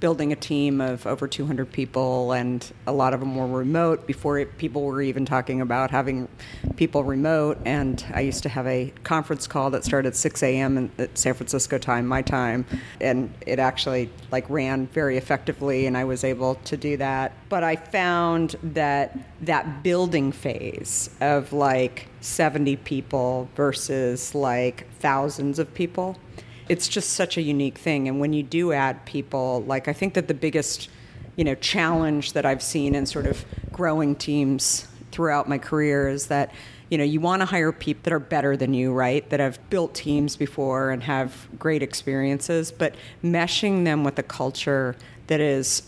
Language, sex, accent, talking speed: English, female, American, 180 wpm